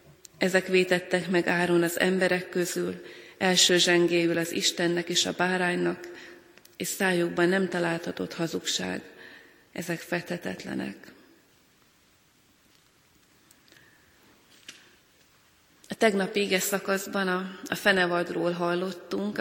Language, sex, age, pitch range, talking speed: Hungarian, female, 30-49, 175-190 Hz, 90 wpm